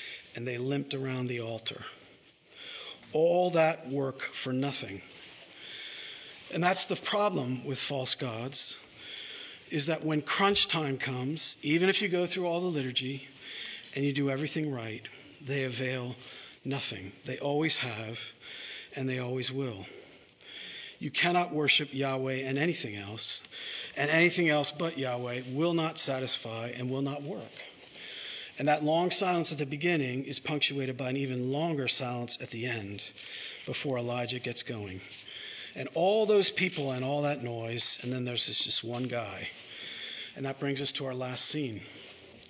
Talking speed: 155 wpm